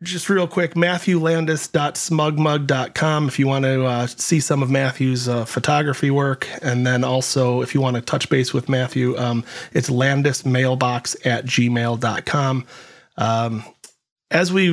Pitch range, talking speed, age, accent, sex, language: 125-145 Hz, 145 wpm, 30-49, American, male, English